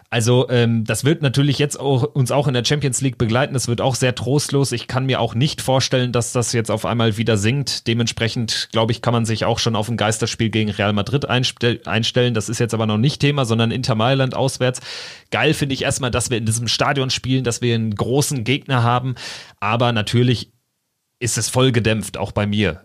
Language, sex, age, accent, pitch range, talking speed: German, male, 30-49, German, 105-125 Hz, 215 wpm